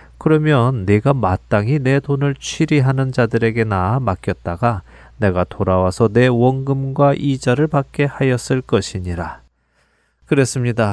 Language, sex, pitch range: Korean, male, 105-140 Hz